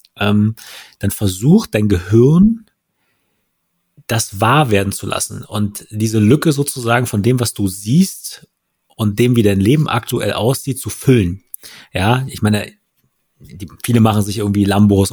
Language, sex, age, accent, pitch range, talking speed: German, male, 30-49, German, 100-120 Hz, 145 wpm